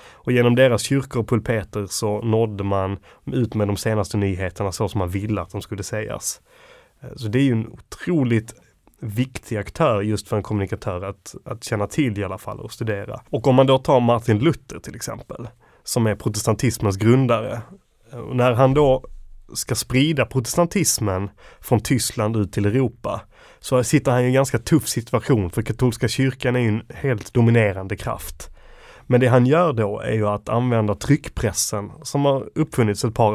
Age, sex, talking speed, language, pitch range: 30-49, male, 180 wpm, Swedish, 105-125 Hz